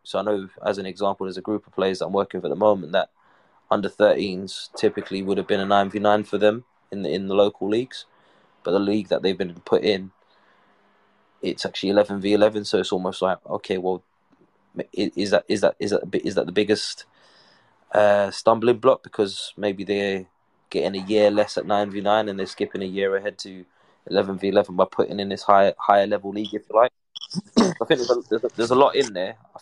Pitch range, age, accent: 95-105 Hz, 20-39, British